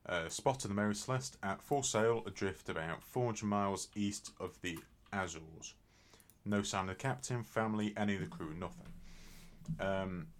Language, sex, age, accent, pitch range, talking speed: English, male, 30-49, British, 90-110 Hz, 175 wpm